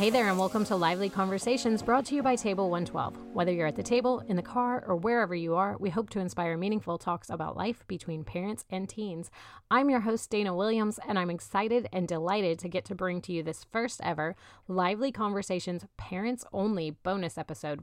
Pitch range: 170-215 Hz